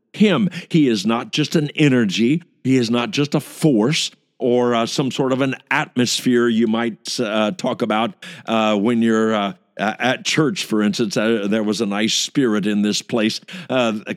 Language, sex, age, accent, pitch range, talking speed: English, male, 50-69, American, 125-180 Hz, 180 wpm